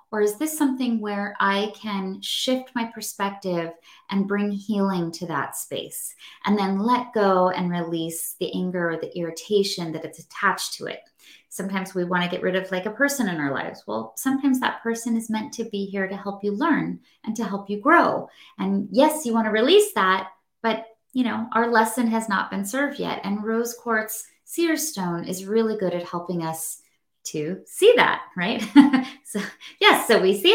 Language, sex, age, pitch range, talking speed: English, female, 30-49, 180-235 Hz, 195 wpm